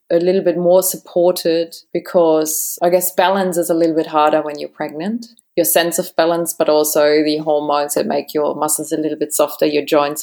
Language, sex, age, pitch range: English, female, 20-39, 155-170 Hz